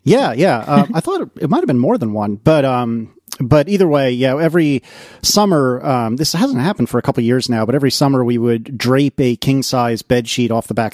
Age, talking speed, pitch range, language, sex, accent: 40-59, 240 wpm, 115-140 Hz, English, male, American